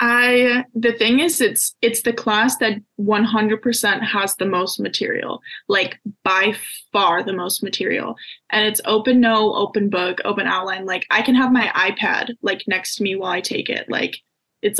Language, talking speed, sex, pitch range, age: English, 180 wpm, female, 205-245 Hz, 20-39